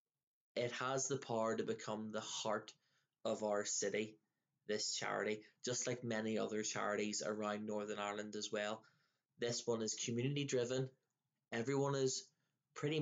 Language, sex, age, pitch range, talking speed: English, male, 20-39, 105-125 Hz, 145 wpm